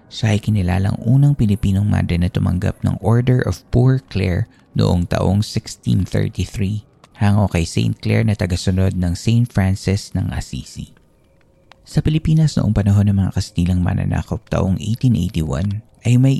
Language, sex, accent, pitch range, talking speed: Filipino, male, native, 90-115 Hz, 145 wpm